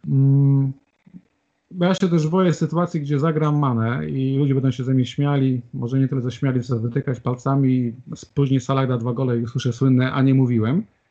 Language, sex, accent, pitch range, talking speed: Polish, male, native, 120-145 Hz, 180 wpm